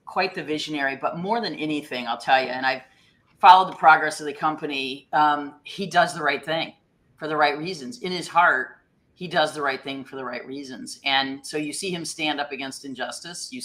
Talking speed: 220 wpm